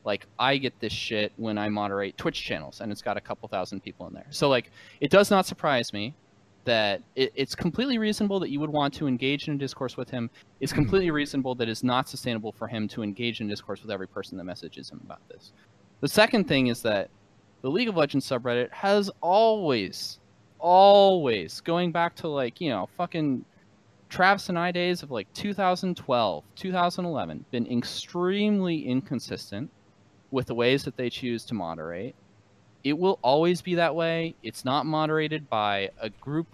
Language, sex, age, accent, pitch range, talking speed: English, male, 20-39, American, 105-150 Hz, 185 wpm